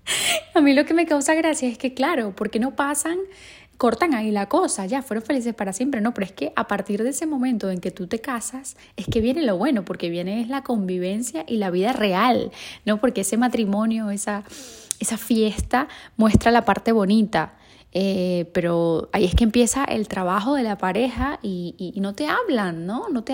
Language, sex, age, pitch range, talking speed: Spanish, female, 10-29, 200-250 Hz, 210 wpm